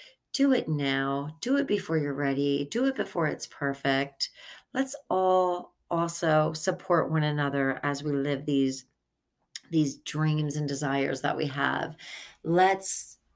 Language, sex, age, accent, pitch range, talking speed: English, female, 30-49, American, 140-165 Hz, 140 wpm